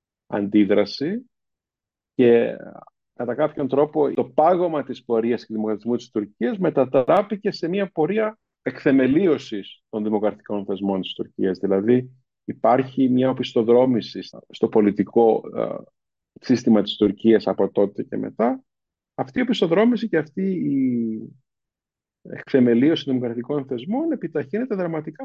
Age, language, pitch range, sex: 50-69, Greek, 110-150 Hz, male